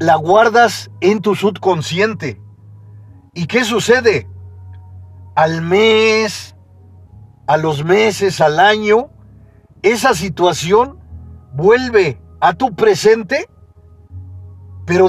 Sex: male